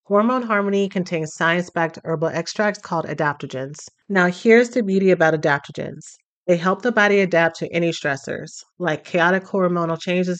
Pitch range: 160-195 Hz